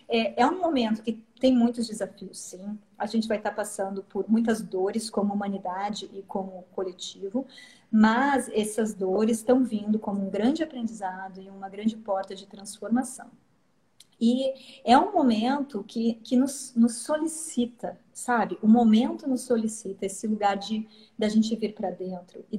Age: 40-59